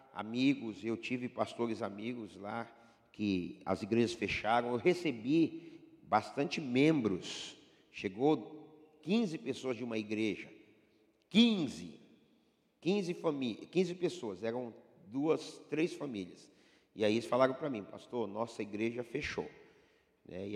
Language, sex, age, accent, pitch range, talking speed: Portuguese, male, 50-69, Brazilian, 105-135 Hz, 115 wpm